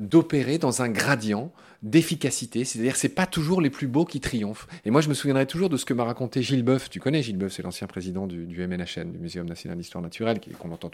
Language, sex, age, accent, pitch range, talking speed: French, male, 40-59, French, 105-145 Hz, 260 wpm